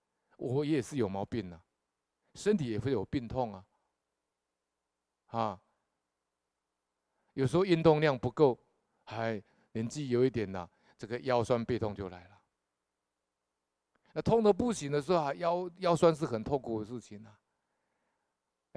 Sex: male